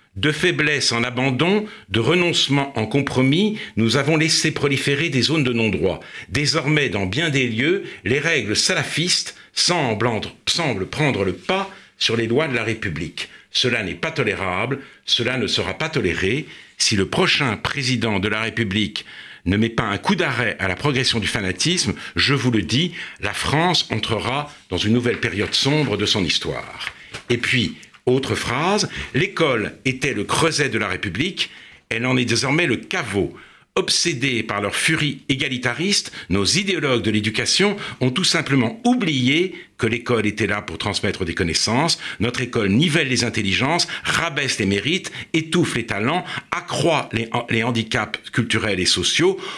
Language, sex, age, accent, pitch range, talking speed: French, male, 50-69, French, 110-155 Hz, 160 wpm